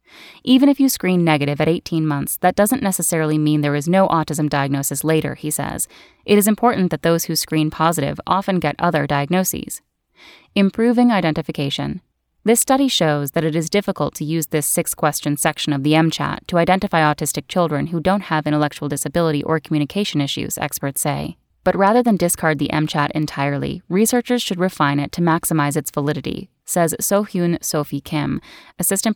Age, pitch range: 10-29, 150-185 Hz